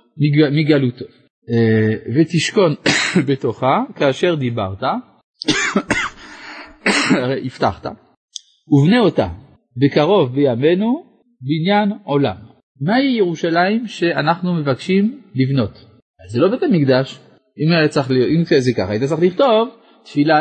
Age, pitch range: 40-59, 130-195 Hz